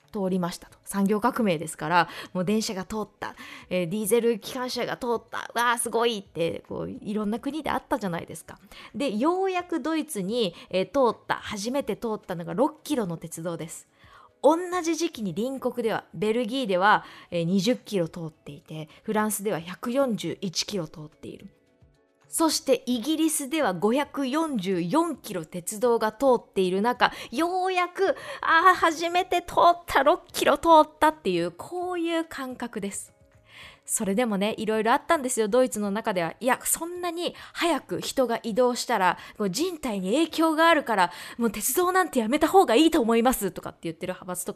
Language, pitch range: Japanese, 195-315 Hz